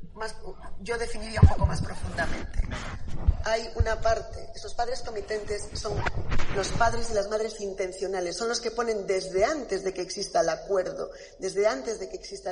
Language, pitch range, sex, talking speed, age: Spanish, 180-220 Hz, female, 170 wpm, 40-59